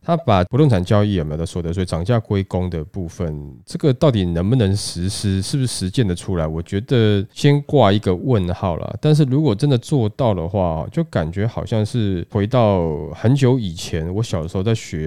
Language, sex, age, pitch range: Chinese, male, 20-39, 90-120 Hz